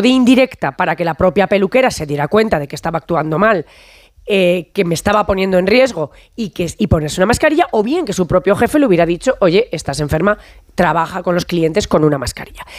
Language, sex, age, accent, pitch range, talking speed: Spanish, female, 30-49, Spanish, 185-275 Hz, 220 wpm